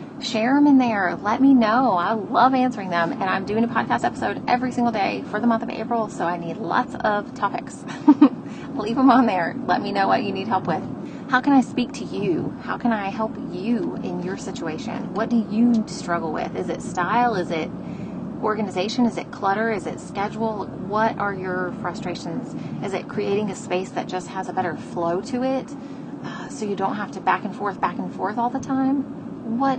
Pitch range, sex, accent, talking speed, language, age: 190-245 Hz, female, American, 215 wpm, English, 30-49